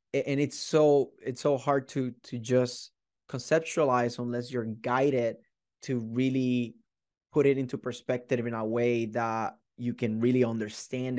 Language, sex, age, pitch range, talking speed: English, male, 20-39, 115-130 Hz, 145 wpm